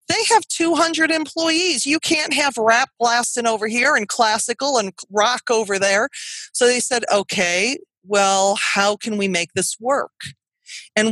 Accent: American